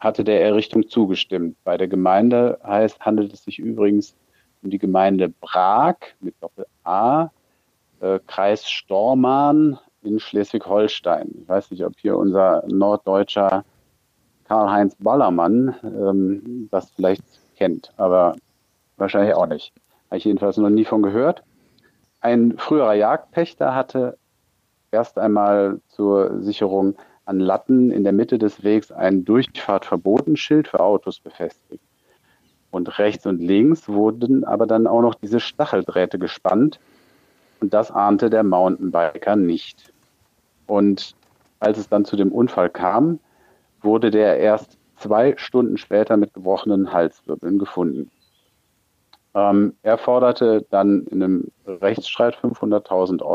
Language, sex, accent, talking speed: German, male, German, 125 wpm